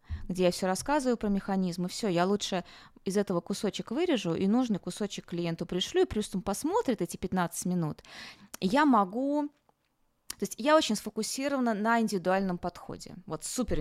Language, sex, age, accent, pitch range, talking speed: Russian, female, 20-39, native, 175-225 Hz, 160 wpm